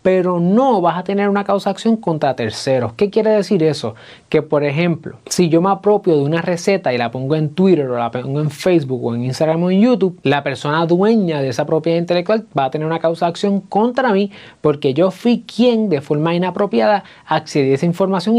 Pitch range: 135-185 Hz